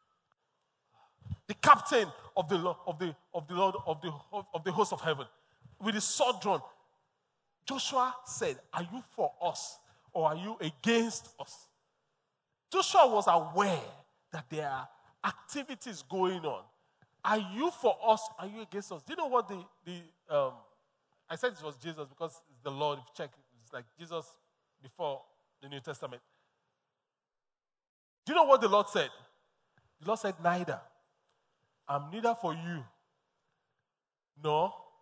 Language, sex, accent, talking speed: English, male, Nigerian, 155 wpm